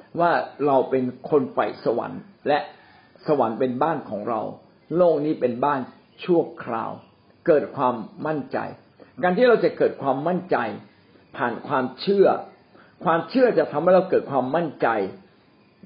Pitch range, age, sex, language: 125-180 Hz, 60-79, male, Thai